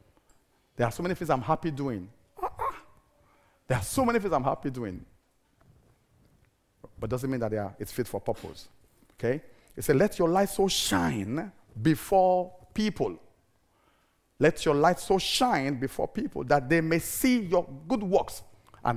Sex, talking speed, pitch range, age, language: male, 160 wpm, 125-215 Hz, 50-69, English